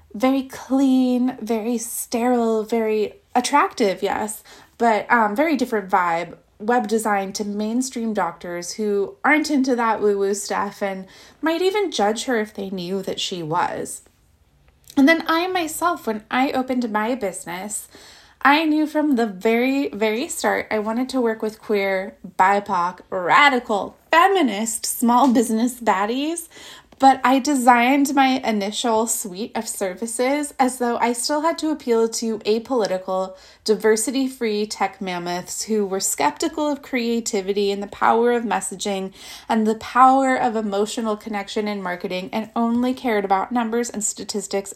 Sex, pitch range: female, 200-255 Hz